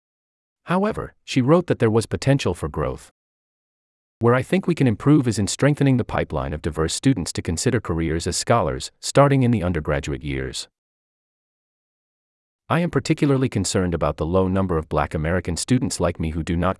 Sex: male